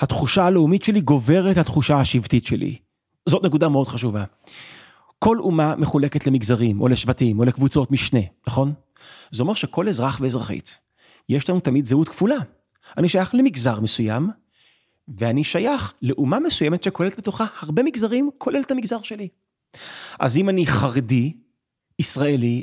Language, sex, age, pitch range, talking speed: Hebrew, male, 30-49, 130-195 Hz, 140 wpm